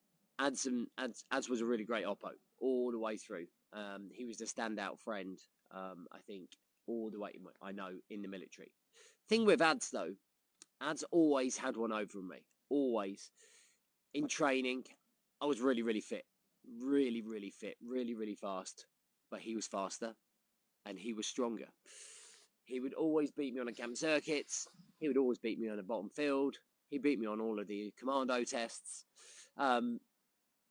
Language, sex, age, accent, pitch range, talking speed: English, male, 20-39, British, 110-145 Hz, 170 wpm